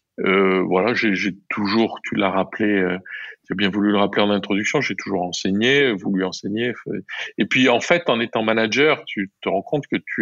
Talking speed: 205 wpm